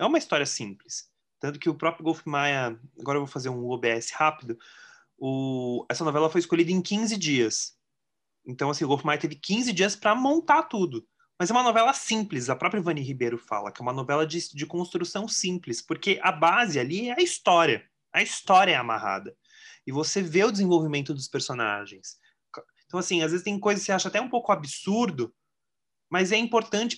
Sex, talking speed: male, 195 wpm